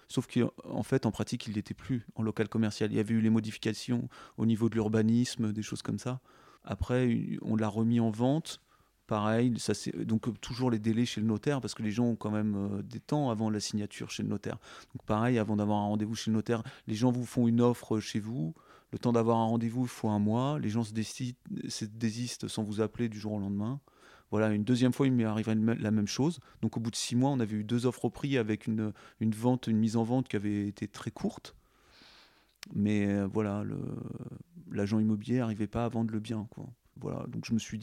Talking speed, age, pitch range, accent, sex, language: 235 wpm, 30-49, 105-120 Hz, French, male, French